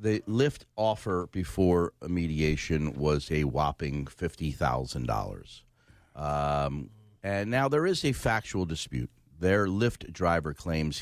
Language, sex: English, male